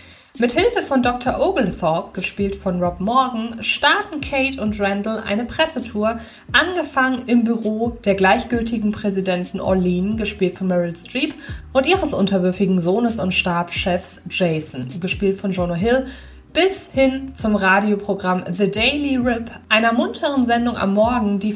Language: German